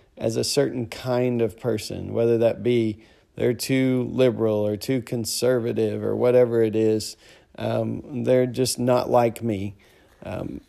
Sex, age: male, 40-59